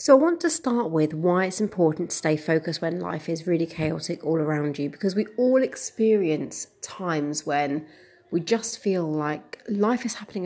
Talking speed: 190 wpm